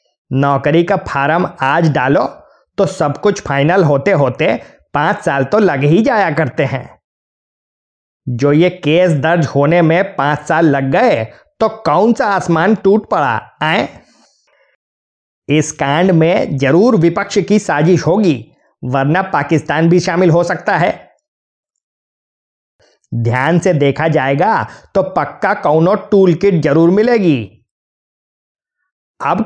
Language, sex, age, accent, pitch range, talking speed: Hindi, male, 20-39, native, 140-180 Hz, 125 wpm